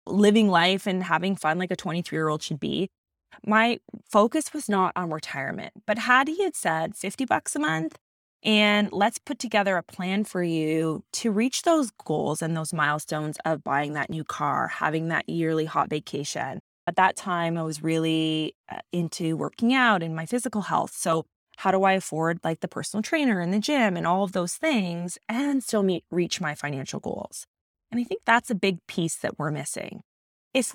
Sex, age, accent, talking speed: female, 20-39, American, 195 wpm